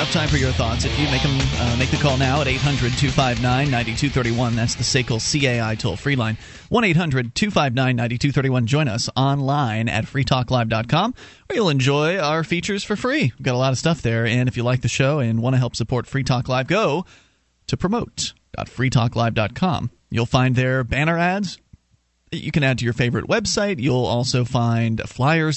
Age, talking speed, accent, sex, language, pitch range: 30-49, 195 wpm, American, male, English, 120-155 Hz